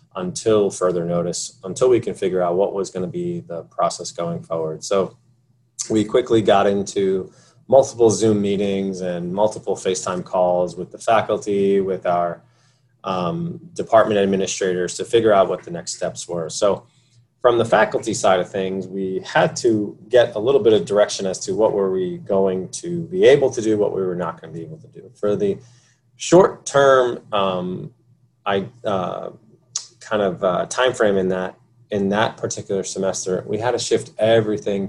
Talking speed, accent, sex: 180 wpm, American, male